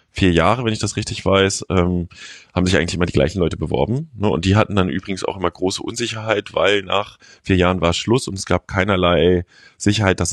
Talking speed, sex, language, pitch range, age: 220 wpm, male, German, 85-100 Hz, 20-39